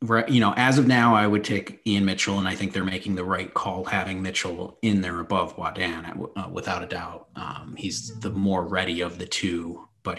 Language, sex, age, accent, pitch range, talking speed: English, male, 30-49, American, 95-105 Hz, 210 wpm